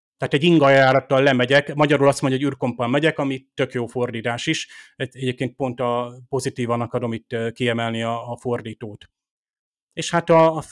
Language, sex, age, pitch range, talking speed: Hungarian, male, 30-49, 125-150 Hz, 160 wpm